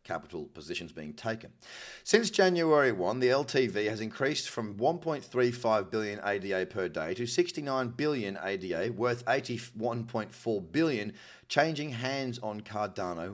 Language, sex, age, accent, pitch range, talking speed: English, male, 30-49, Australian, 110-145 Hz, 125 wpm